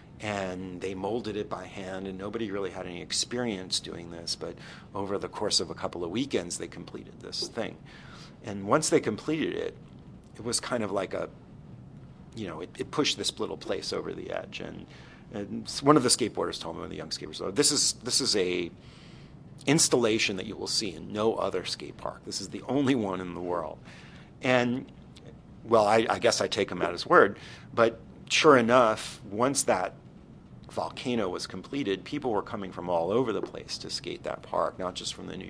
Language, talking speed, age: English, 205 wpm, 50-69